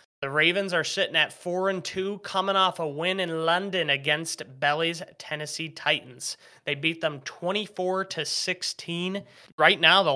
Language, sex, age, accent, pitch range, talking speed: English, male, 20-39, American, 130-170 Hz, 165 wpm